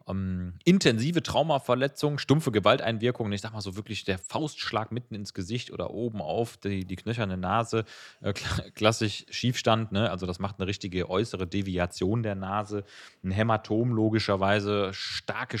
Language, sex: German, male